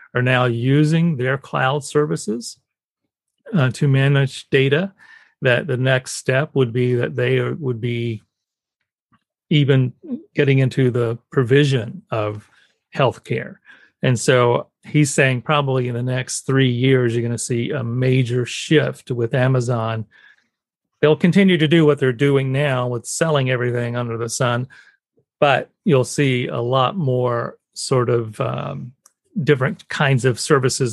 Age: 40-59